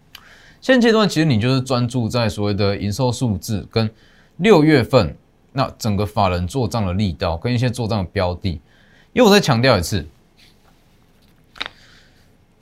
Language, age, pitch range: Chinese, 20-39, 100-140 Hz